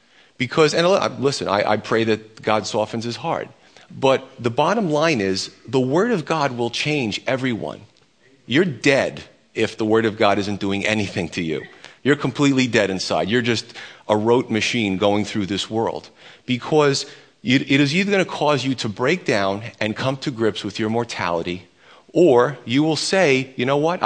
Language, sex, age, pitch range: English, male, 40-59, 105-145 Hz